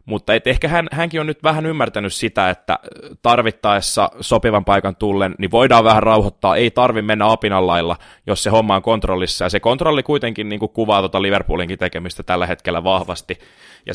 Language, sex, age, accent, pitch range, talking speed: Finnish, male, 20-39, native, 95-110 Hz, 170 wpm